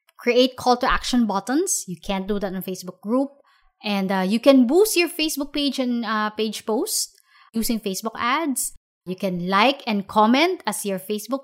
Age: 20-39